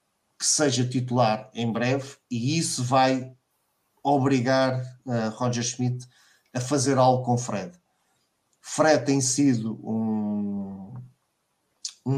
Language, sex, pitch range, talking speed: Portuguese, male, 120-140 Hz, 110 wpm